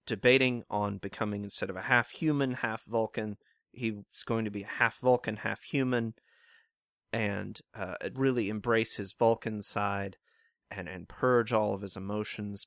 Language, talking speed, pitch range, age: English, 135 wpm, 100-120 Hz, 30-49